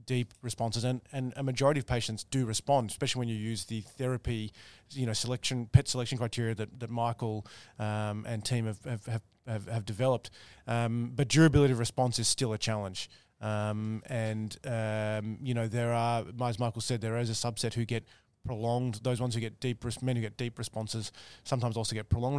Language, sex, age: English, male, 20-39